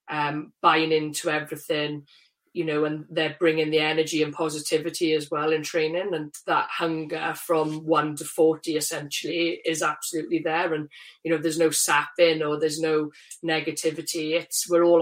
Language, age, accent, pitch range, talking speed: English, 30-49, British, 155-170 Hz, 165 wpm